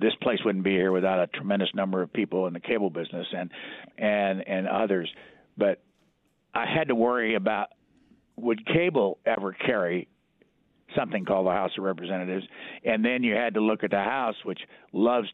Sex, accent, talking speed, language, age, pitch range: male, American, 180 wpm, English, 50-69, 100-145 Hz